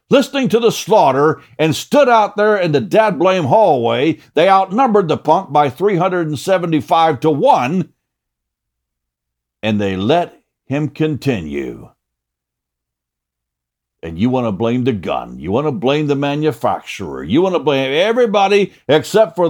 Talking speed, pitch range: 140 wpm, 125-185 Hz